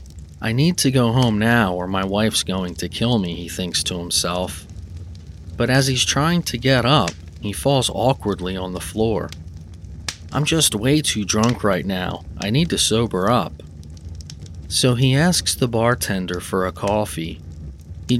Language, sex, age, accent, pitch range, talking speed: English, male, 30-49, American, 85-120 Hz, 170 wpm